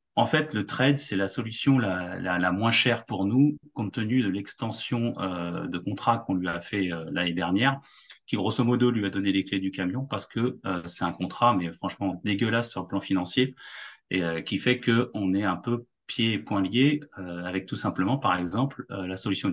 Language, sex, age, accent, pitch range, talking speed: French, male, 30-49, French, 95-120 Hz, 220 wpm